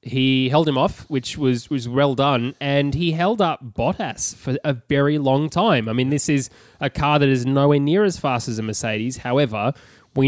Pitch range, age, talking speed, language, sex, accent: 115-140 Hz, 10-29, 210 wpm, English, male, Australian